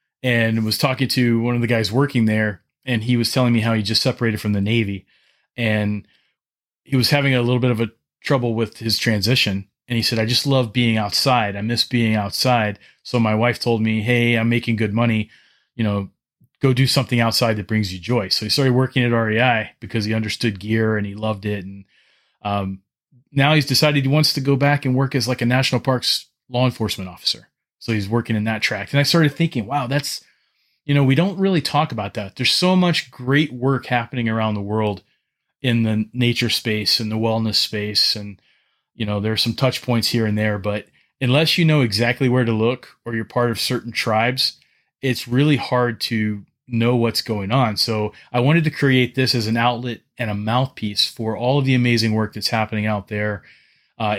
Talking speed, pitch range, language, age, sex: 215 wpm, 110-130 Hz, English, 30-49, male